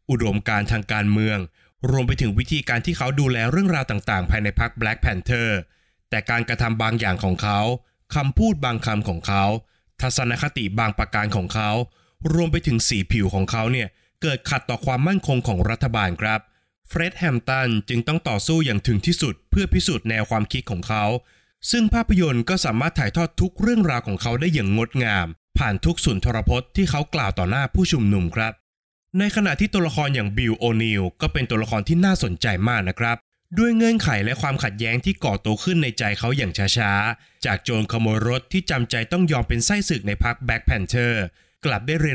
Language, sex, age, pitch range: Thai, male, 20-39, 105-140 Hz